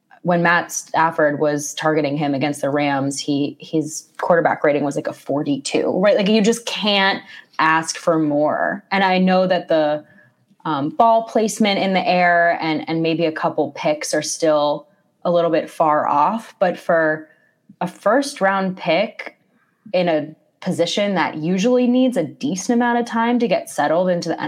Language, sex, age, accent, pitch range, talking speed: English, female, 20-39, American, 155-185 Hz, 170 wpm